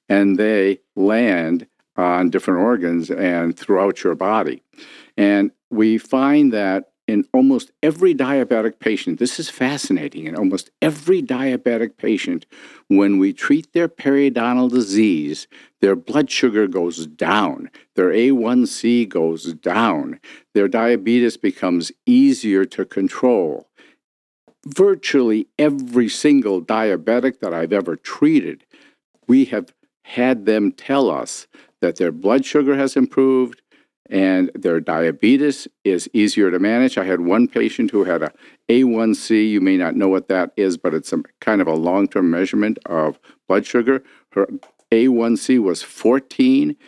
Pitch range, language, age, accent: 105-150 Hz, English, 50-69, American